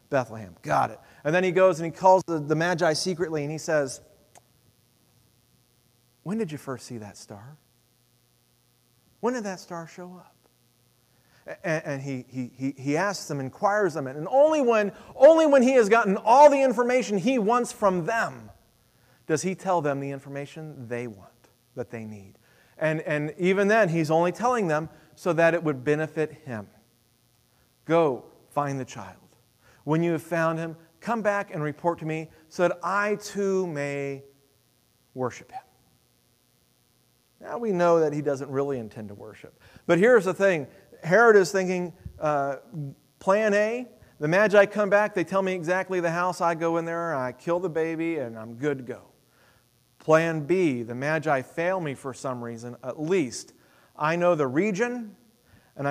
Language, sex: English, male